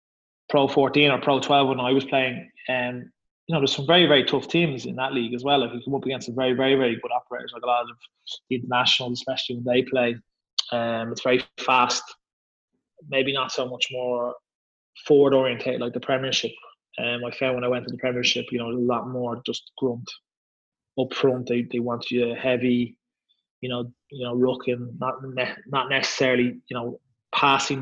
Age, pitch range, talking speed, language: 20-39, 120-135 Hz, 205 wpm, English